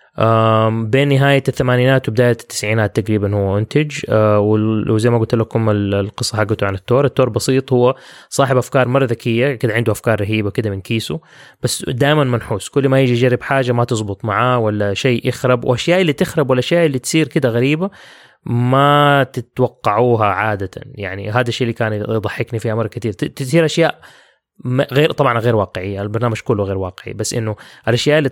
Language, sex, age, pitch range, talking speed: English, male, 20-39, 110-135 Hz, 165 wpm